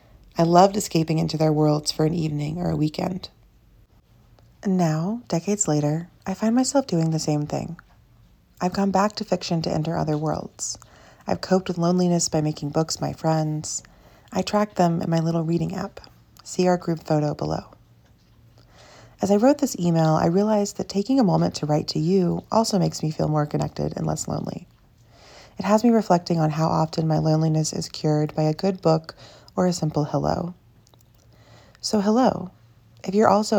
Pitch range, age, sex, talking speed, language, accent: 150-190 Hz, 30-49, female, 180 wpm, English, American